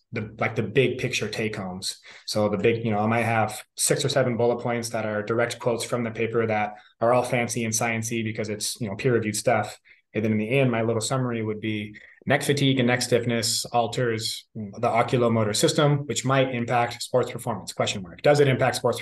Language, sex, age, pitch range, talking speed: English, male, 20-39, 110-125 Hz, 220 wpm